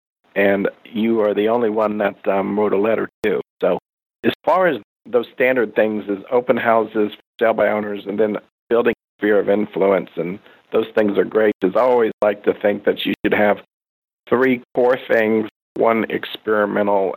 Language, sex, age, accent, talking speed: English, male, 50-69, American, 180 wpm